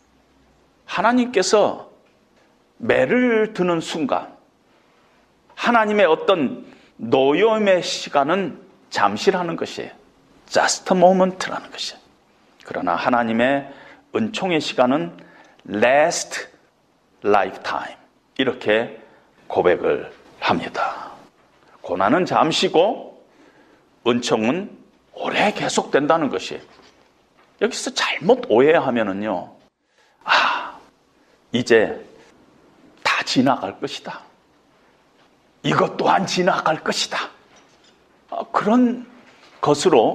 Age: 40-59